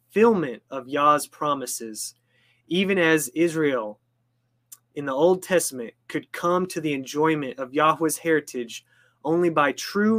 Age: 20-39